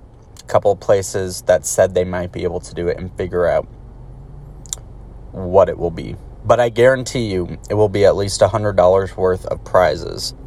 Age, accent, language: 20-39, American, English